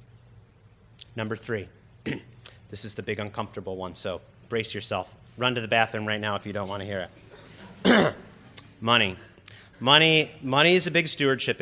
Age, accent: 30-49, American